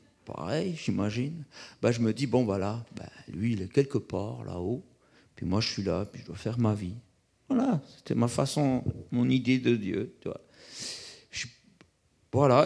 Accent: French